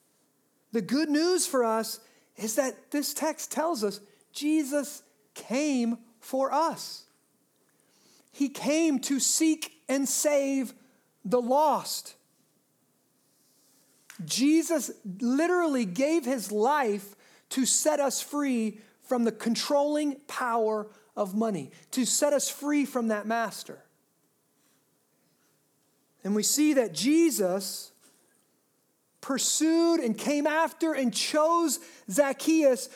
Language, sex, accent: English, male, American